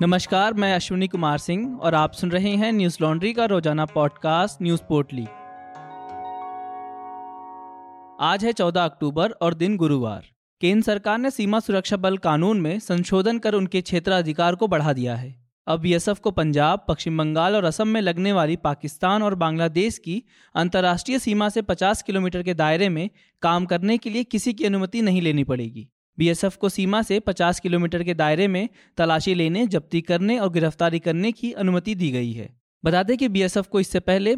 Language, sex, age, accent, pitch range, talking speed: Hindi, male, 20-39, native, 165-205 Hz, 175 wpm